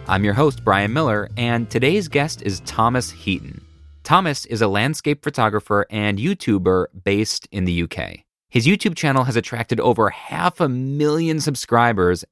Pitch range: 95-135 Hz